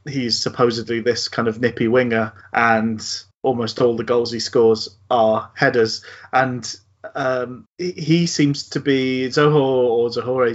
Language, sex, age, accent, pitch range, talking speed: English, male, 30-49, British, 115-140 Hz, 140 wpm